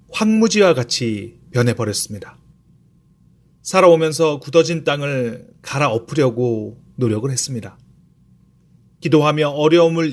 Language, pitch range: Korean, 115-165 Hz